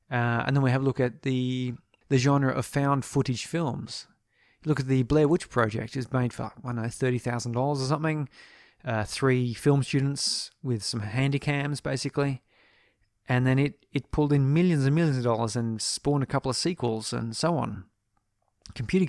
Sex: male